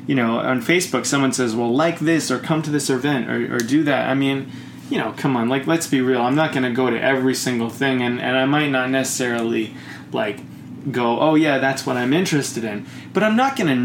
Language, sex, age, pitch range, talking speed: English, male, 20-39, 120-150 Hz, 245 wpm